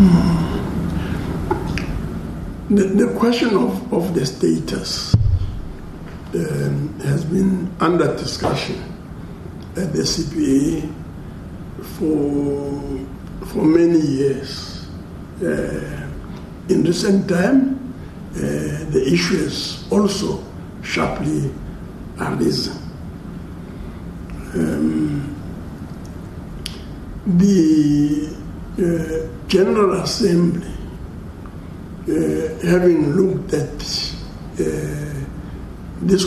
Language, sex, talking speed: English, male, 65 wpm